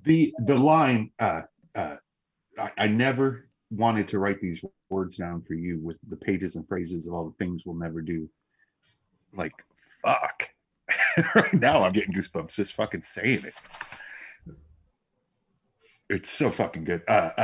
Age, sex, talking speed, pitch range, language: 40-59, male, 150 wpm, 85-105 Hz, English